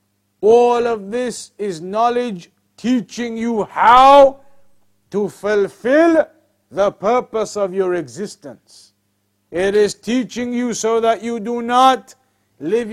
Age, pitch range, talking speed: 50-69, 185-225 Hz, 115 wpm